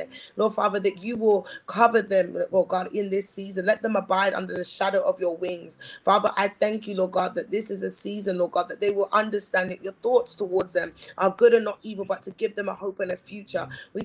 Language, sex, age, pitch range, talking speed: English, female, 20-39, 195-220 Hz, 250 wpm